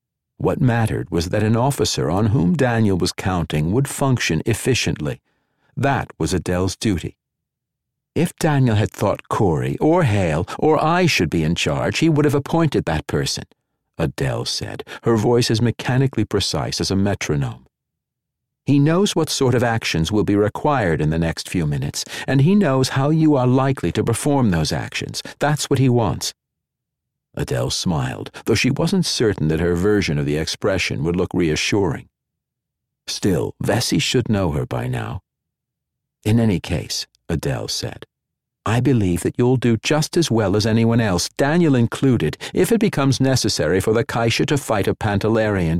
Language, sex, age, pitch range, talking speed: English, male, 60-79, 100-135 Hz, 165 wpm